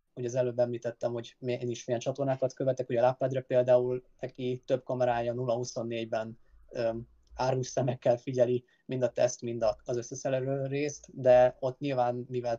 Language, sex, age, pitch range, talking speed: Hungarian, male, 20-39, 115-130 Hz, 155 wpm